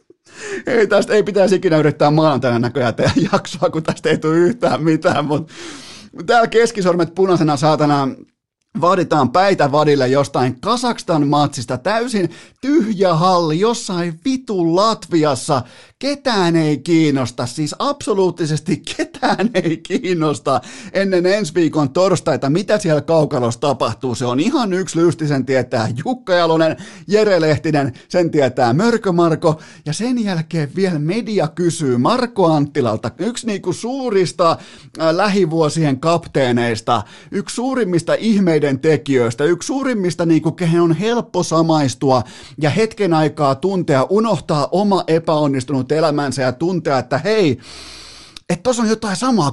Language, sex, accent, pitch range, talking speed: Finnish, male, native, 145-195 Hz, 120 wpm